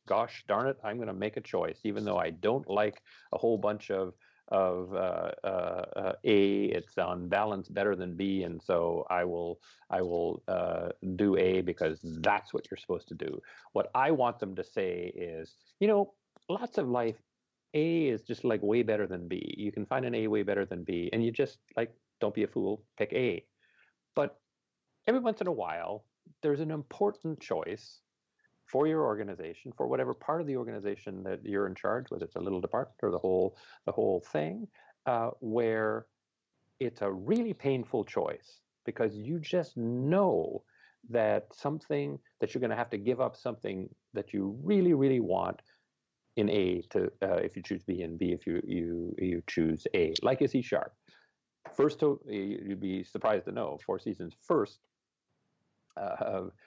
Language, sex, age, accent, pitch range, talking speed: English, male, 40-59, American, 95-135 Hz, 185 wpm